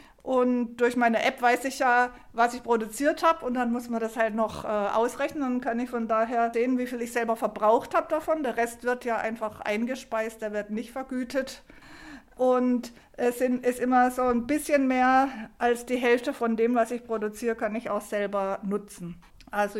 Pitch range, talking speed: 215-255 Hz, 195 wpm